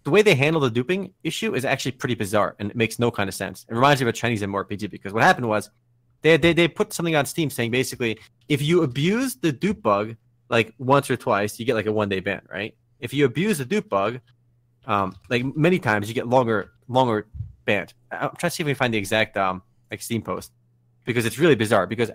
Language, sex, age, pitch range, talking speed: English, male, 20-39, 120-170 Hz, 245 wpm